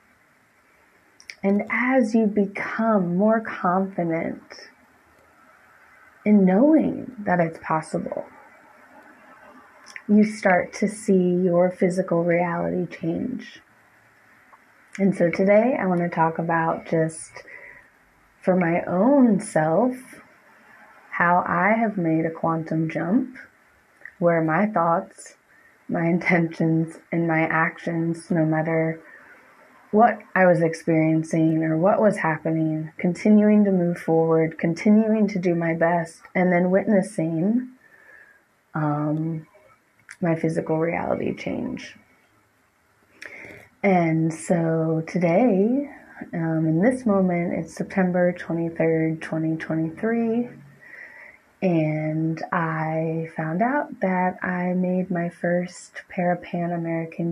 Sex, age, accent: female, 20-39, American